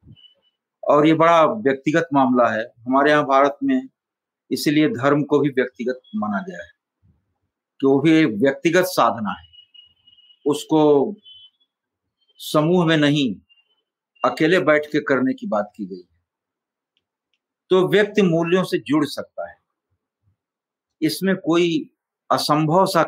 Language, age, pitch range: Hindi, 60-79, 125-180 Hz